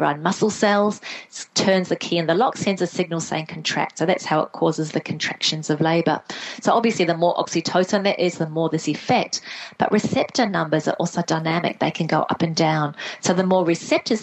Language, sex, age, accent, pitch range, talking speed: English, female, 30-49, Australian, 160-190 Hz, 210 wpm